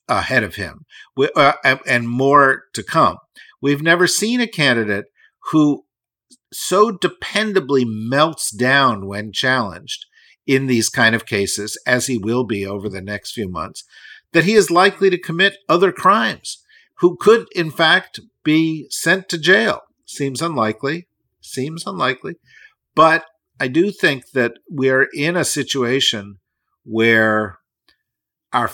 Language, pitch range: English, 115-165 Hz